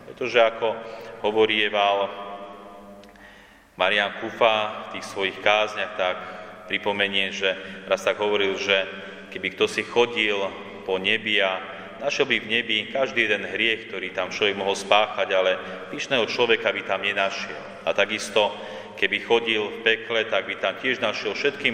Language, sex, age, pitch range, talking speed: Slovak, male, 30-49, 95-110 Hz, 145 wpm